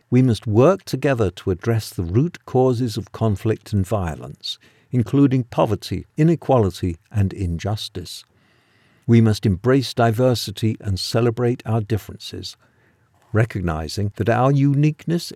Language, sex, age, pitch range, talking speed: English, male, 50-69, 100-120 Hz, 115 wpm